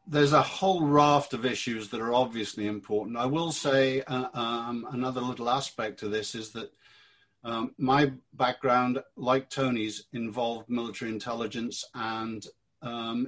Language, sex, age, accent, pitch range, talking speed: English, male, 50-69, British, 110-135 Hz, 145 wpm